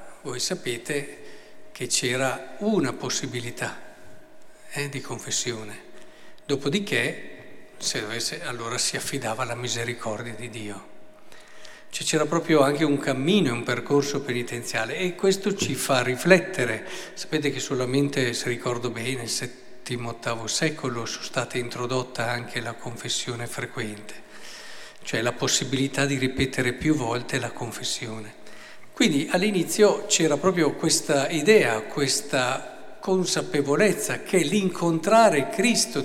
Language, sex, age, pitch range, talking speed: Italian, male, 50-69, 125-165 Hz, 115 wpm